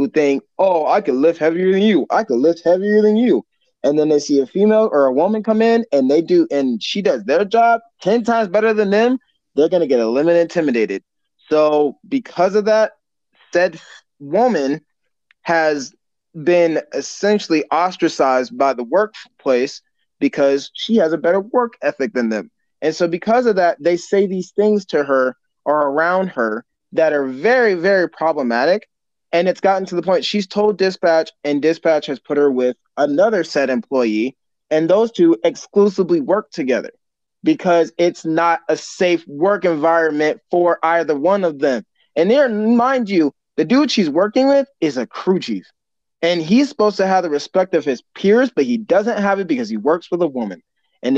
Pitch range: 150-210 Hz